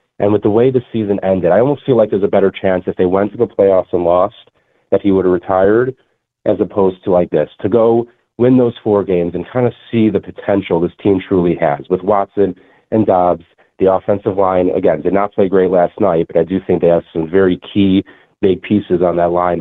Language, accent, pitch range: English, American, 90-105 Hz